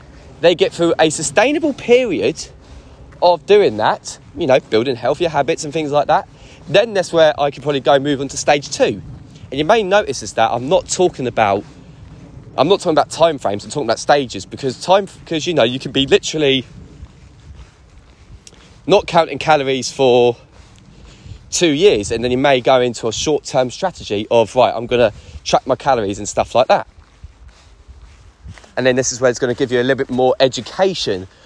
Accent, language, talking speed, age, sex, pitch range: British, English, 195 wpm, 20-39, male, 105-160 Hz